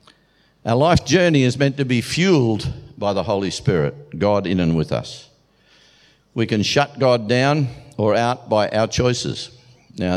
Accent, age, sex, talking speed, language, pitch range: Australian, 50-69, male, 165 wpm, English, 95-125 Hz